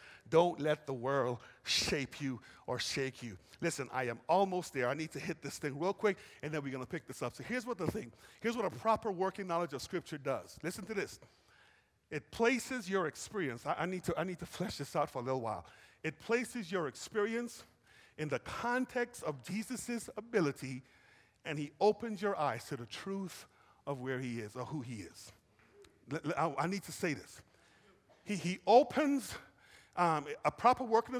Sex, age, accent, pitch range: male, 40-59, American, 140-215 Hz